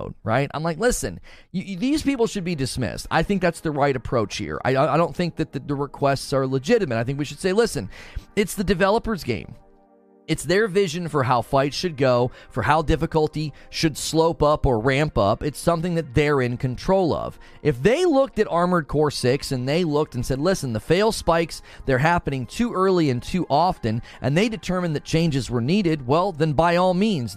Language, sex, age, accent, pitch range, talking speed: English, male, 30-49, American, 130-190 Hz, 210 wpm